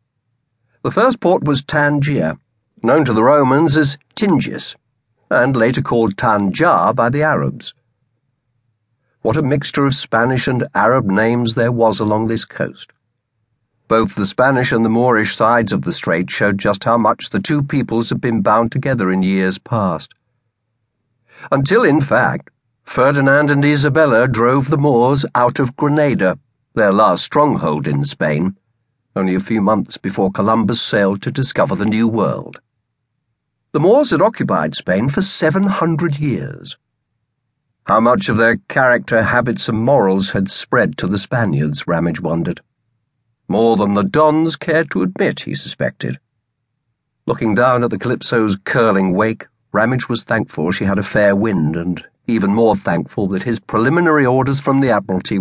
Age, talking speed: 50-69, 155 wpm